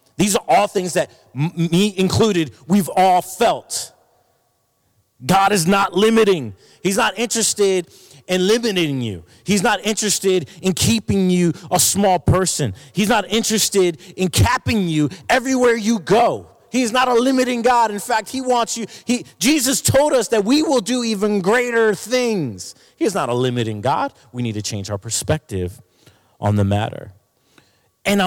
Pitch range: 140-200 Hz